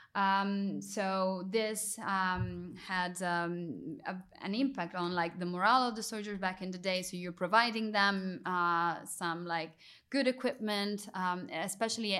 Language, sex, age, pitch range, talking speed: English, female, 10-29, 175-200 Hz, 150 wpm